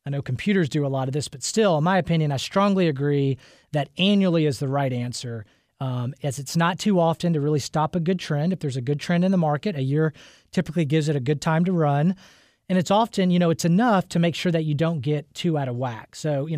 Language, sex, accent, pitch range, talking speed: English, male, American, 140-180 Hz, 260 wpm